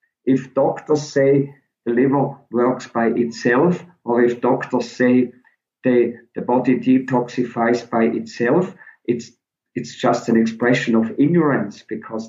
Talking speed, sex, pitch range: 125 wpm, male, 115-140 Hz